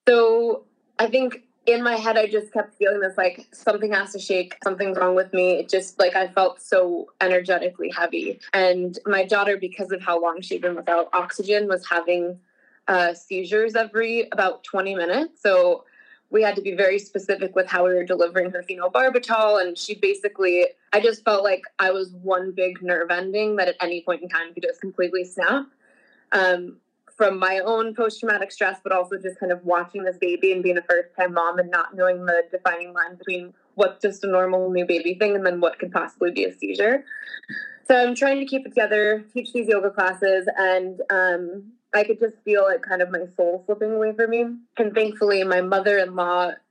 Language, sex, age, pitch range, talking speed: English, female, 20-39, 180-220 Hz, 200 wpm